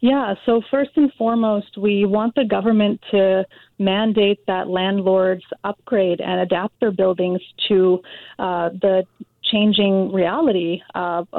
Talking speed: 125 wpm